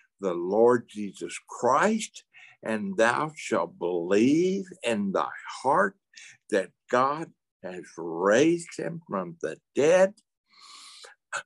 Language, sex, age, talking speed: English, male, 60-79, 105 wpm